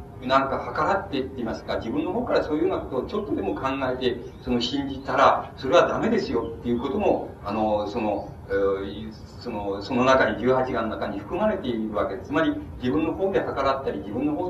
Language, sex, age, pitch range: Japanese, male, 40-59, 115-160 Hz